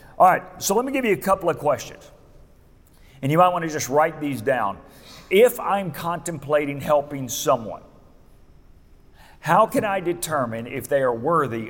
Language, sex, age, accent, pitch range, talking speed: English, male, 40-59, American, 120-175 Hz, 170 wpm